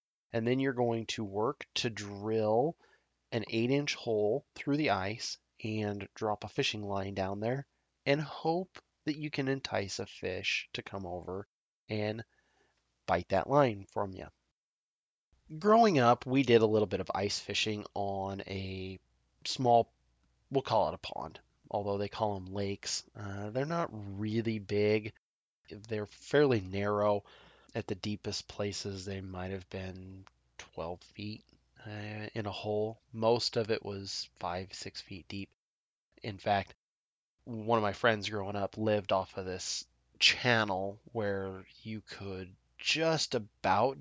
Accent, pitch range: American, 95-120 Hz